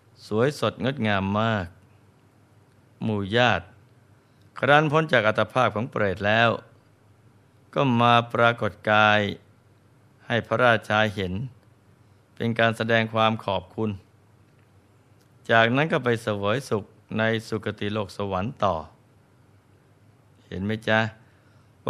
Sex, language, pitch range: male, Thai, 105-120 Hz